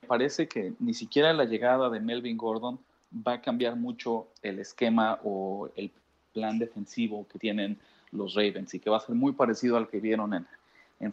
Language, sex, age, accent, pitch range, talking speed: Spanish, male, 30-49, Mexican, 105-130 Hz, 190 wpm